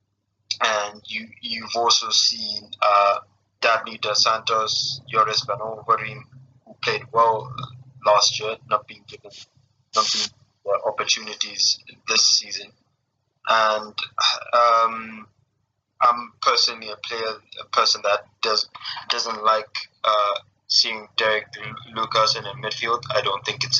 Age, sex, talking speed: 20-39, male, 125 wpm